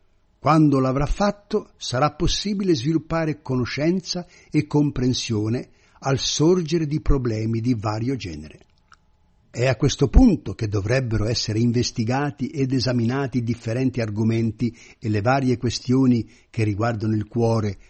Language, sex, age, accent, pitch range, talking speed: Italian, male, 60-79, native, 110-155 Hz, 120 wpm